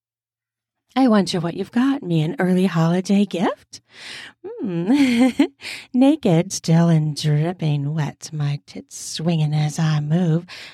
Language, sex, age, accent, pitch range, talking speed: English, female, 40-59, American, 155-245 Hz, 130 wpm